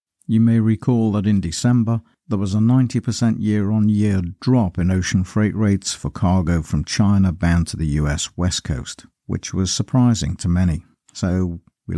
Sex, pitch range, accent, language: male, 85-105 Hz, British, English